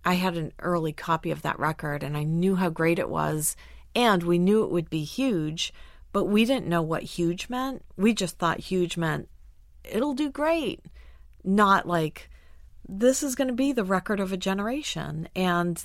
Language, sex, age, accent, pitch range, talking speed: English, female, 40-59, American, 150-185 Hz, 190 wpm